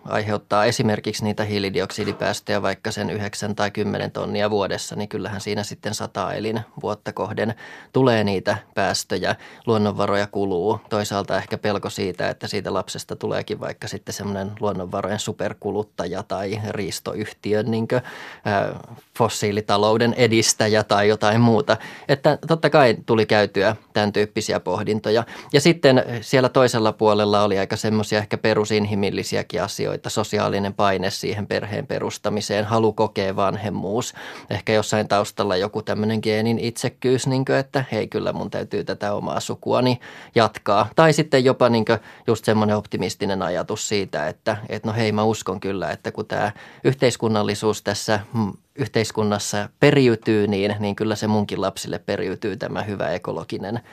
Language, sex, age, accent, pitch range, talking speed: Finnish, male, 20-39, native, 105-115 Hz, 140 wpm